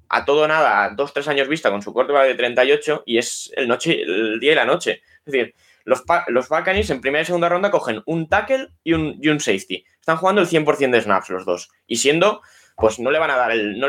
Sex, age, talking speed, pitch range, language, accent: male, 20-39, 250 wpm, 115-165 Hz, Spanish, Spanish